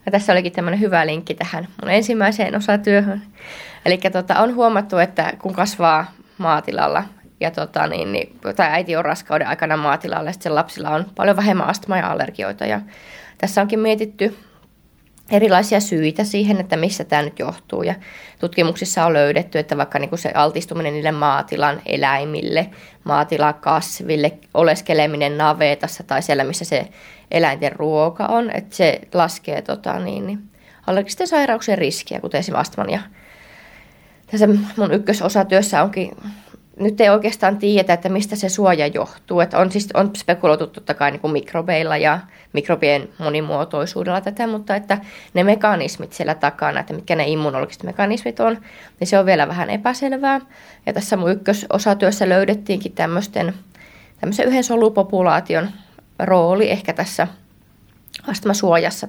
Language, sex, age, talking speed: Finnish, female, 20-39, 135 wpm